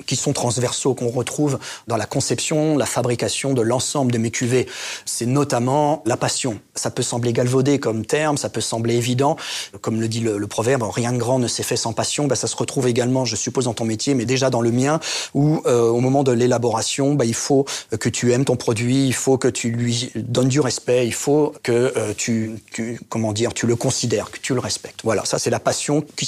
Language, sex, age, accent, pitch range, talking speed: French, male, 30-49, French, 120-140 Hz, 230 wpm